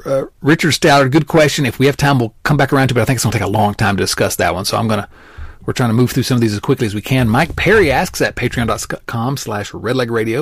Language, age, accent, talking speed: English, 40-59, American, 300 wpm